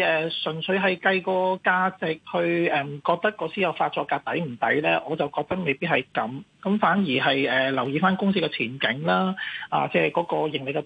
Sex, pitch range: male, 150-195 Hz